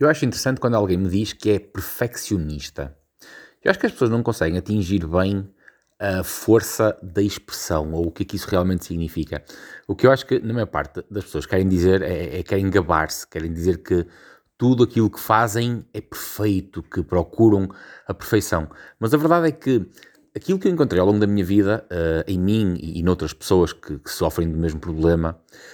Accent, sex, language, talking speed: Portuguese, male, Portuguese, 200 wpm